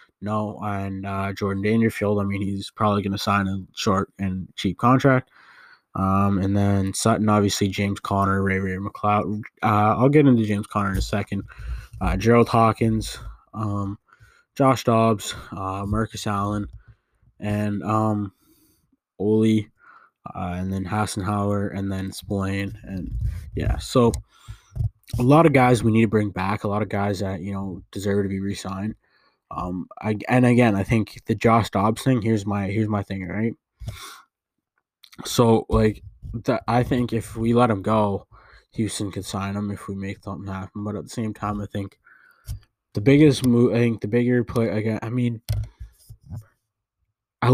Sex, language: male, English